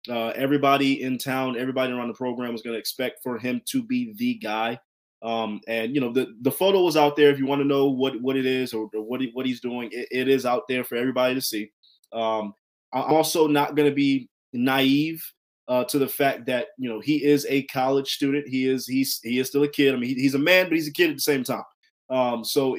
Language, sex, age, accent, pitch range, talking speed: English, male, 20-39, American, 120-145 Hz, 255 wpm